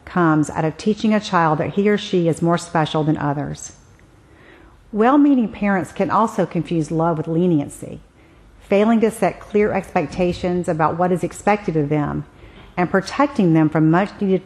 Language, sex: English, female